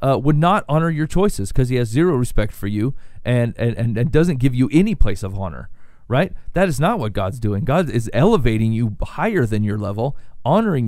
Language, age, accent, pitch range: English, 40-59, American, 110-155 Hz